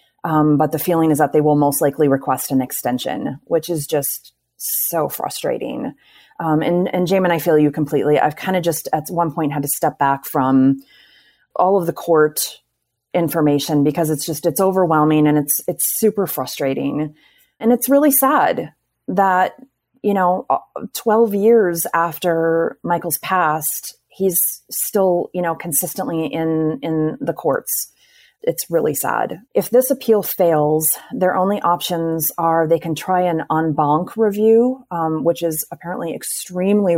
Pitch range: 150-185 Hz